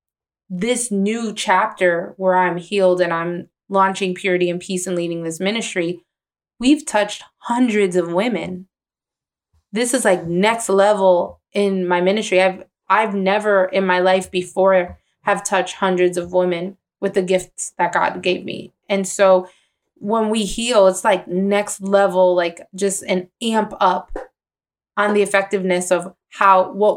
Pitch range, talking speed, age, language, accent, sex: 180-200 Hz, 150 wpm, 20-39, English, American, female